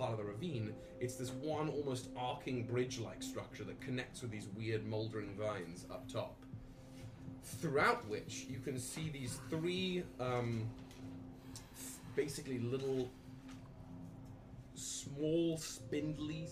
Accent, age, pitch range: British, 30-49, 125-140 Hz